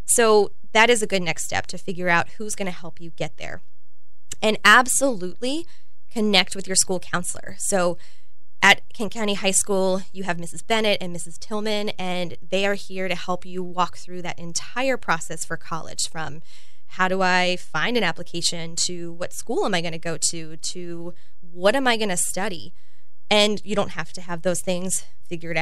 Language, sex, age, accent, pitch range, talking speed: English, female, 20-39, American, 170-205 Hz, 185 wpm